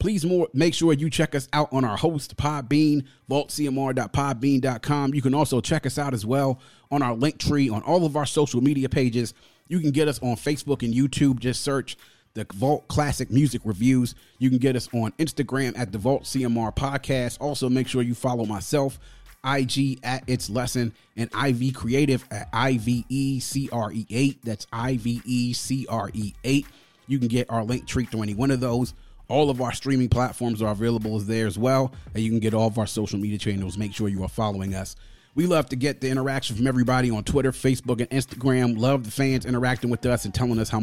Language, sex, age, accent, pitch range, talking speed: English, male, 30-49, American, 115-140 Hz, 200 wpm